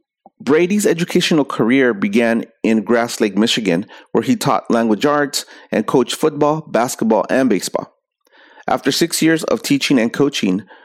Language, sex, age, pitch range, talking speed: English, male, 30-49, 105-155 Hz, 145 wpm